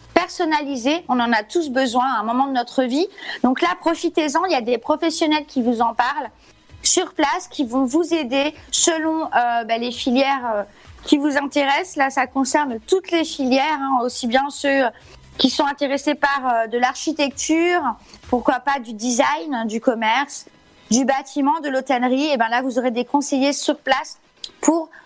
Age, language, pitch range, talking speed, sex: 30-49, French, 245-305 Hz, 180 wpm, female